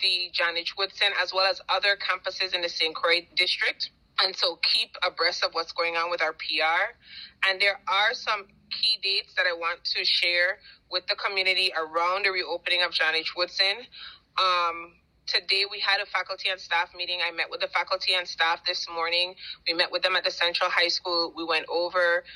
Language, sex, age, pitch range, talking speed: English, female, 30-49, 170-195 Hz, 205 wpm